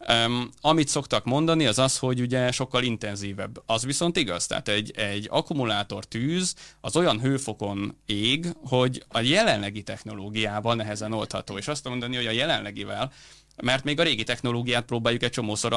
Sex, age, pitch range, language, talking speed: male, 30-49, 105-130 Hz, Hungarian, 160 wpm